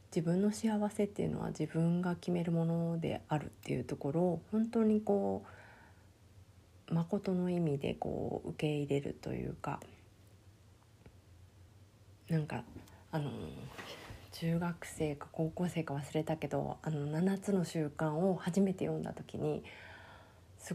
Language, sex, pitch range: Japanese, female, 105-175 Hz